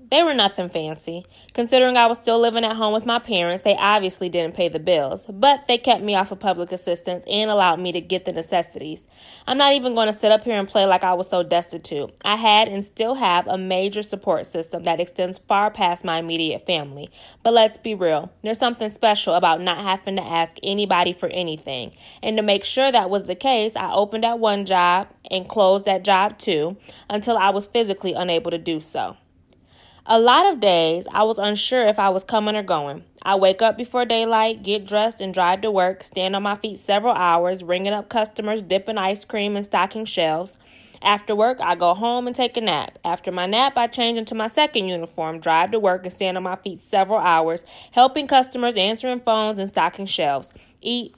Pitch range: 180-225 Hz